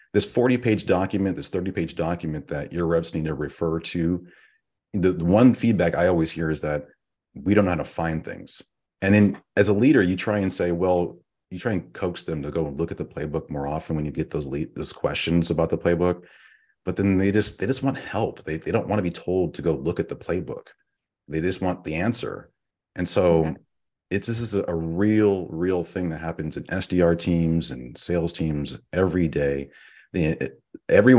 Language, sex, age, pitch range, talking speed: English, male, 30-49, 80-95 Hz, 210 wpm